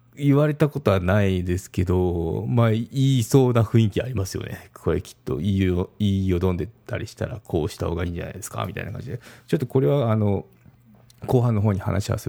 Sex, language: male, Japanese